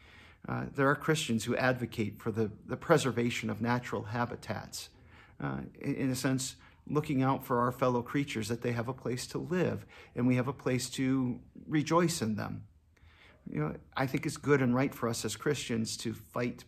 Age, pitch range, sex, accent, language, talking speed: 50-69, 110-135 Hz, male, American, English, 190 wpm